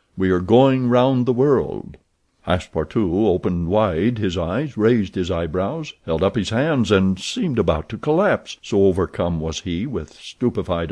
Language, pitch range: Korean, 90-125 Hz